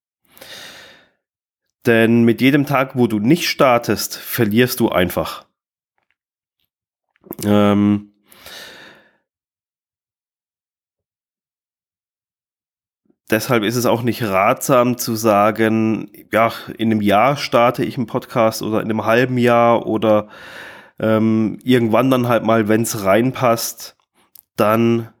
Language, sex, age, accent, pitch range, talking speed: German, male, 20-39, German, 105-120 Hz, 100 wpm